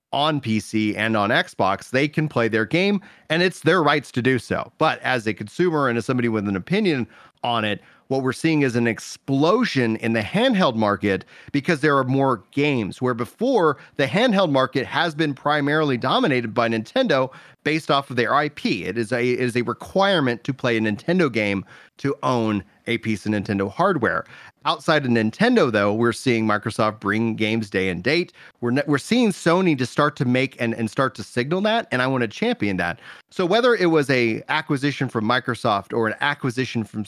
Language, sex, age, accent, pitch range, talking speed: English, male, 30-49, American, 115-150 Hz, 195 wpm